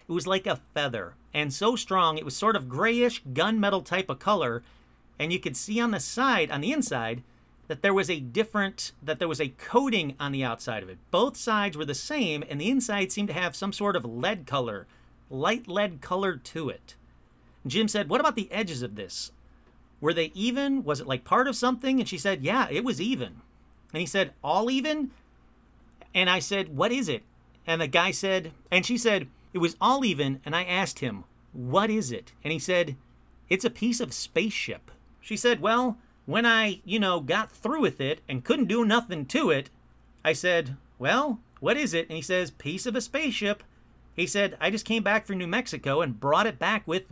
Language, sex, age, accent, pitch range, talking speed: English, male, 40-59, American, 145-220 Hz, 215 wpm